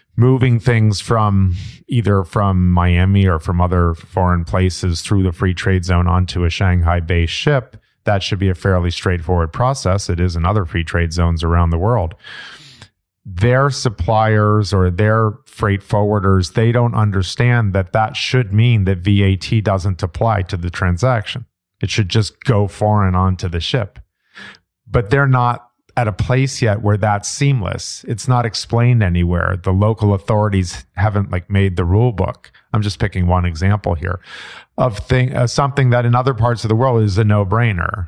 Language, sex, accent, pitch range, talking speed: English, male, American, 90-115 Hz, 175 wpm